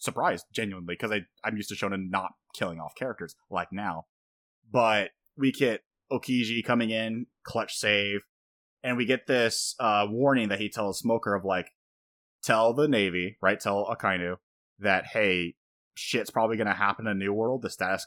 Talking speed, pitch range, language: 170 wpm, 95-115 Hz, English